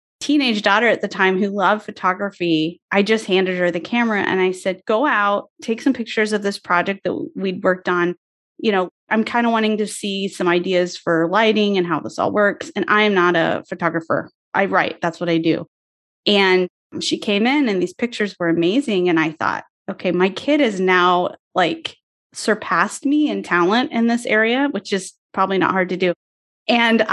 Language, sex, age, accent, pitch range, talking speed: English, female, 20-39, American, 175-210 Hz, 200 wpm